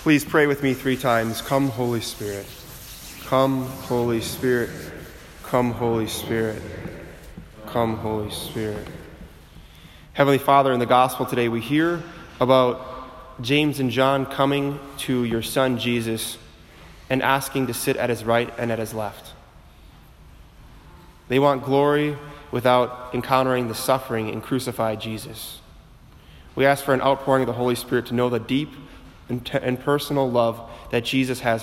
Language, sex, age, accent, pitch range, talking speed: English, male, 20-39, American, 110-135 Hz, 140 wpm